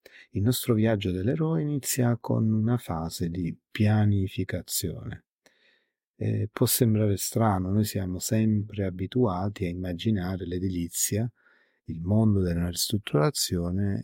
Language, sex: Italian, male